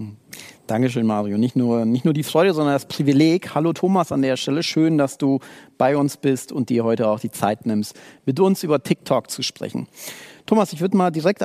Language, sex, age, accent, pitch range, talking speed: German, male, 40-59, German, 130-165 Hz, 210 wpm